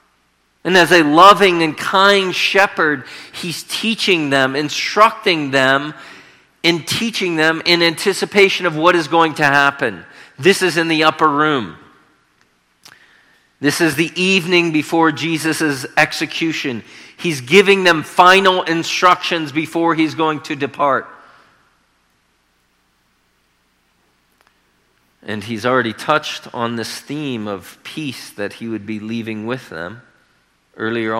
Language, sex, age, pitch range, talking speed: English, male, 40-59, 110-160 Hz, 120 wpm